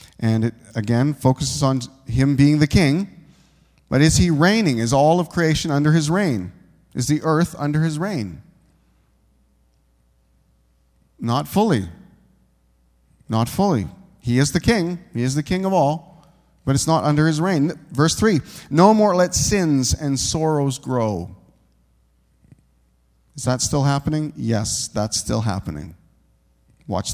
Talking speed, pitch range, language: 140 wpm, 95-155 Hz, English